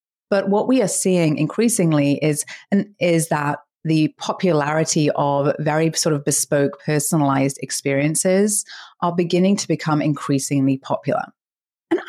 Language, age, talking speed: English, 30-49, 125 wpm